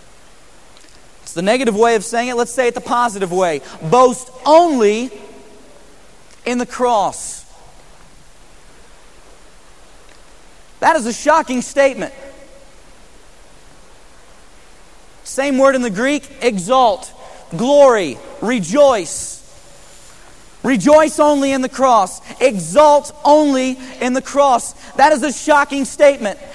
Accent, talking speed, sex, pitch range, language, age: American, 100 wpm, male, 250-310 Hz, English, 40-59